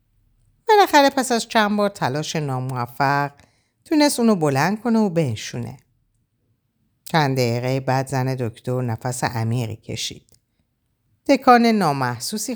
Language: Persian